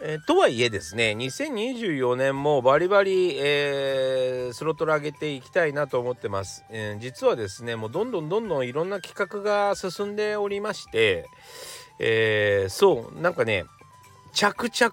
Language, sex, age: Japanese, male, 40-59